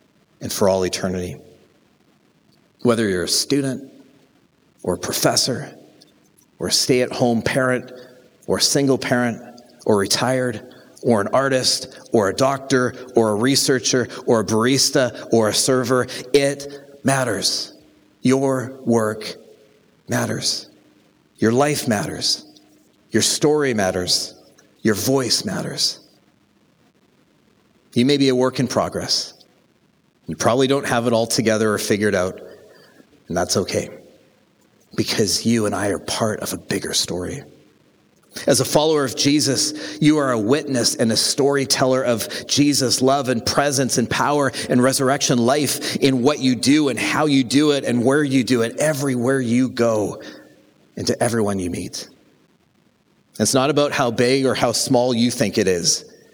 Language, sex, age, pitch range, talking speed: English, male, 40-59, 115-140 Hz, 145 wpm